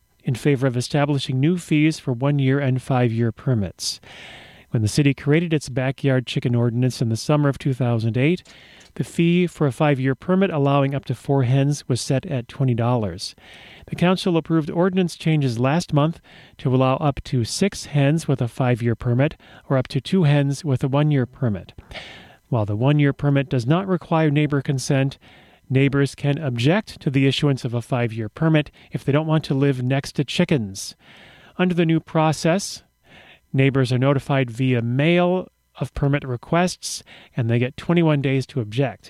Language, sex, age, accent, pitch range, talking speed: English, male, 40-59, American, 125-155 Hz, 170 wpm